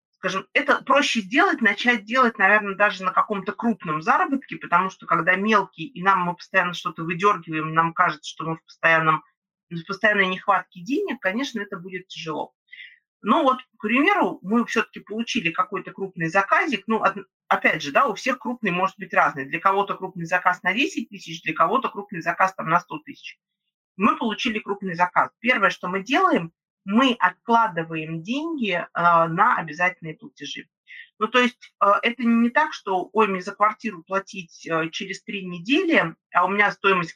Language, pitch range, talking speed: Russian, 170-225 Hz, 170 wpm